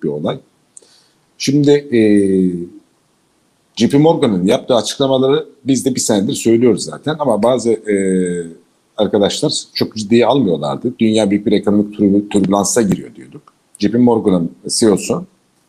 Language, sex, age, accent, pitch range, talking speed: Turkish, male, 50-69, native, 100-125 Hz, 120 wpm